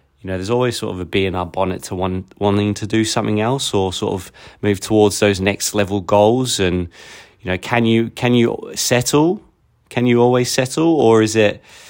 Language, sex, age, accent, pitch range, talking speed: English, male, 20-39, British, 90-100 Hz, 210 wpm